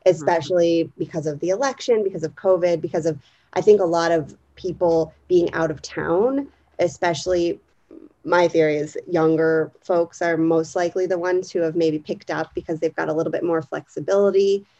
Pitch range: 160-185 Hz